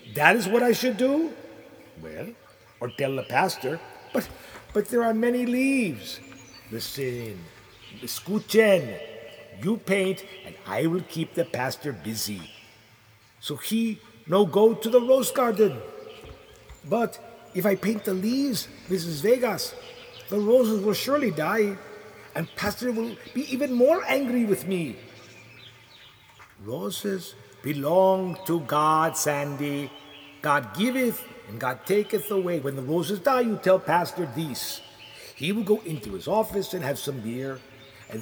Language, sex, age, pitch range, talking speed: English, male, 50-69, 135-225 Hz, 140 wpm